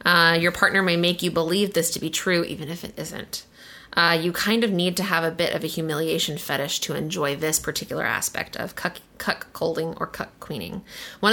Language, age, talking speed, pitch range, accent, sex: English, 20-39, 200 wpm, 165-185 Hz, American, female